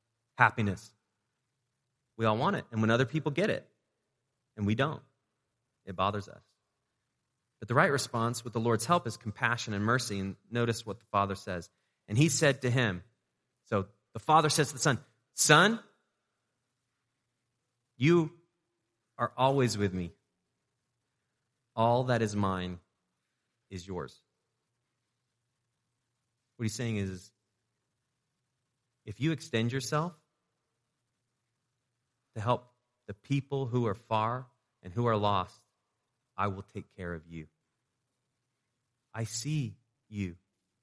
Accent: American